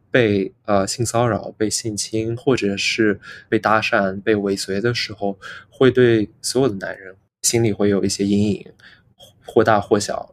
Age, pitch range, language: 20-39, 100-115 Hz, Chinese